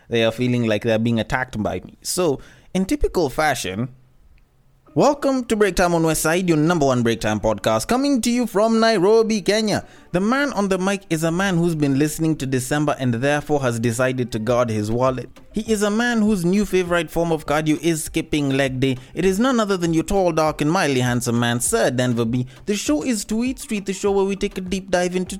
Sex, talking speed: male, 225 wpm